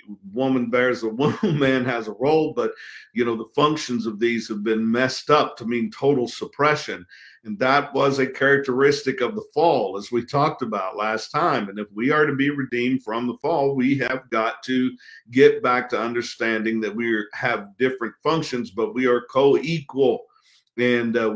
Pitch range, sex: 120-145 Hz, male